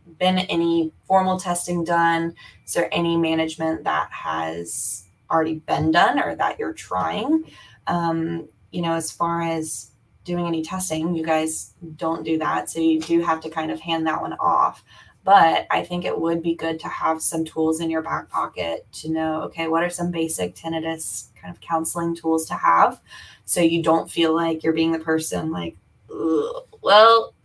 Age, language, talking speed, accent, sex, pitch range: 20-39, English, 180 wpm, American, female, 155-175 Hz